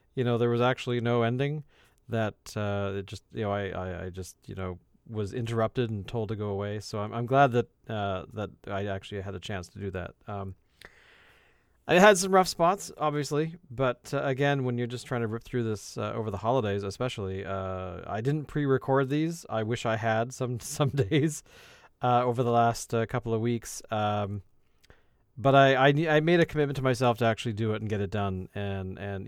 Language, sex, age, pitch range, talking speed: English, male, 40-59, 105-130 Hz, 215 wpm